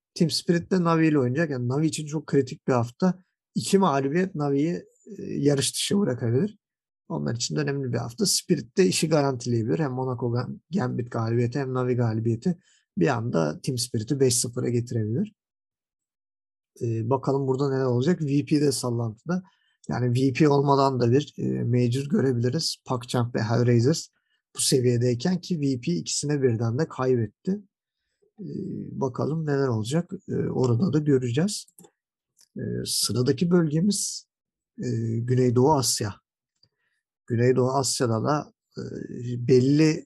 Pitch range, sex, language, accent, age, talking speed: 125-160 Hz, male, Turkish, native, 50-69, 125 wpm